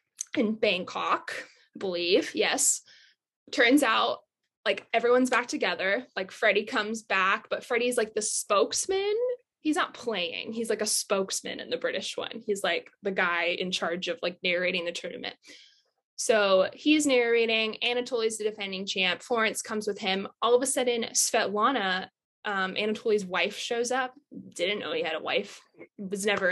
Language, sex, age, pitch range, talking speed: English, female, 10-29, 200-245 Hz, 160 wpm